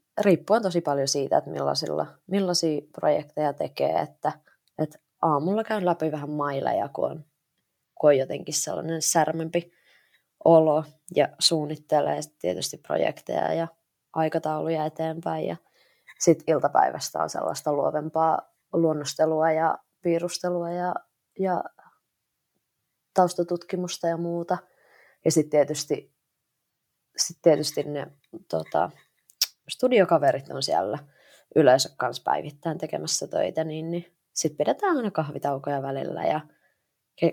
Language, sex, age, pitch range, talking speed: Finnish, female, 20-39, 150-170 Hz, 110 wpm